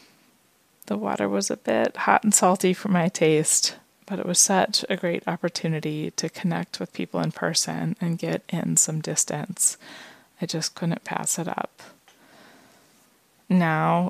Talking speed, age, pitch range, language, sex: 155 wpm, 20-39, 165-185 Hz, English, female